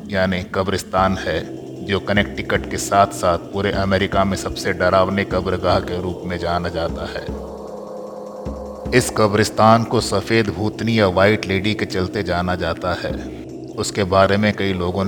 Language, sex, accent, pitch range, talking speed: Hindi, male, native, 90-105 Hz, 150 wpm